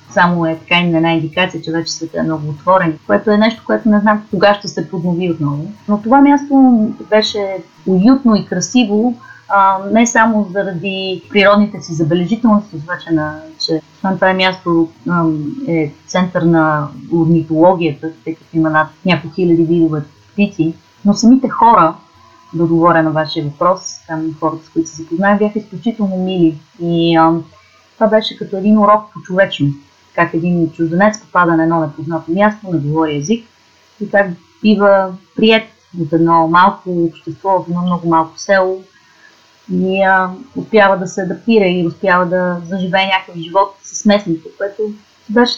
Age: 30-49